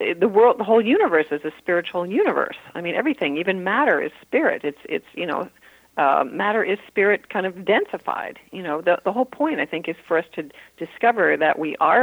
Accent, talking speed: American, 225 wpm